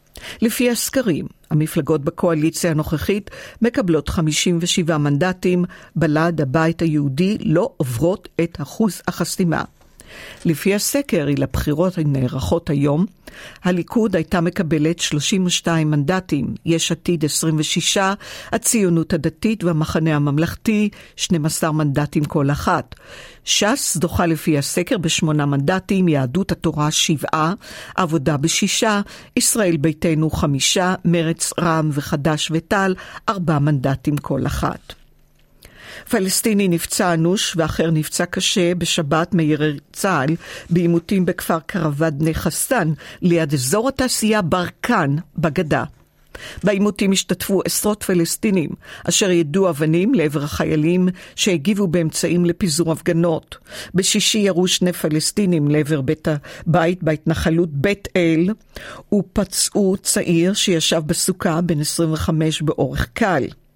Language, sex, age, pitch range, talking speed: Hebrew, female, 50-69, 160-190 Hz, 100 wpm